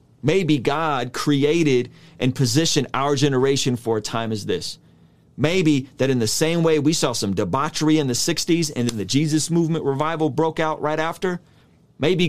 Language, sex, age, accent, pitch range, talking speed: English, male, 30-49, American, 125-160 Hz, 175 wpm